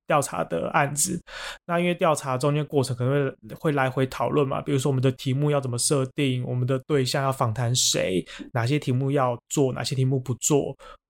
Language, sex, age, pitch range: Chinese, male, 20-39, 130-155 Hz